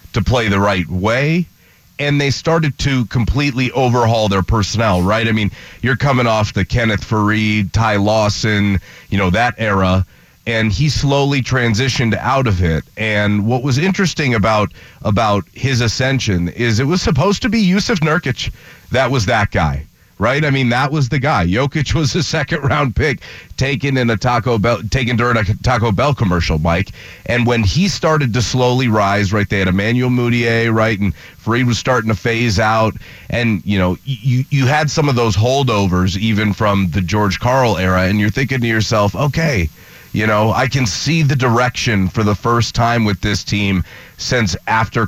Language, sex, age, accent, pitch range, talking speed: English, male, 30-49, American, 100-130 Hz, 185 wpm